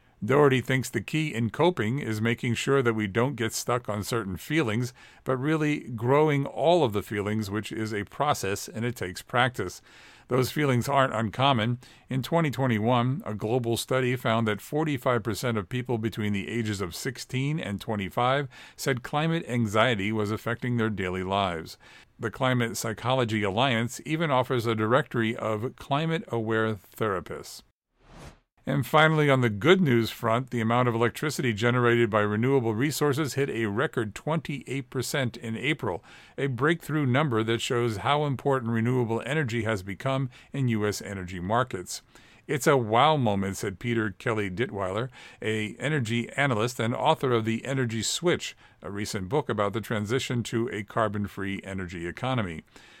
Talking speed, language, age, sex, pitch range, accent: 155 wpm, English, 50-69, male, 110-135 Hz, American